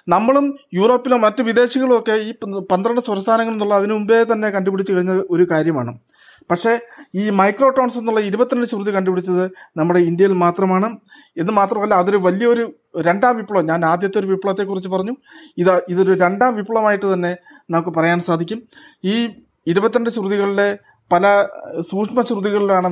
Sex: male